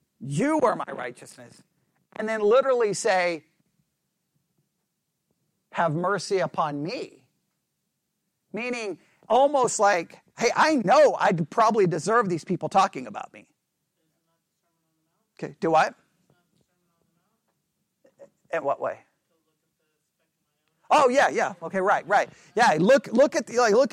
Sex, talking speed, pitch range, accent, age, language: male, 115 wpm, 180-260 Hz, American, 50-69, English